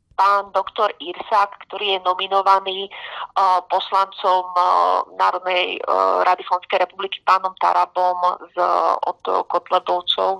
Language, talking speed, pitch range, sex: Slovak, 115 wpm, 170-195 Hz, female